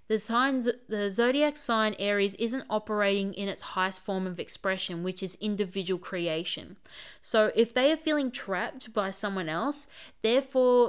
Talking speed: 150 wpm